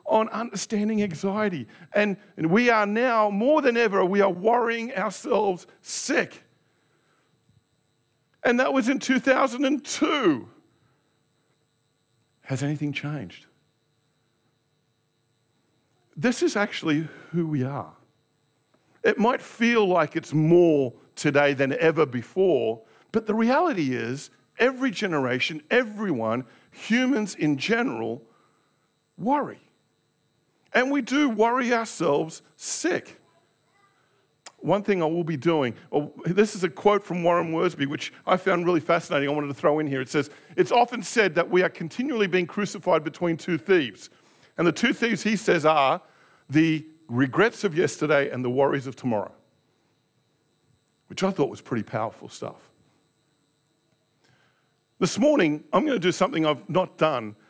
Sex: male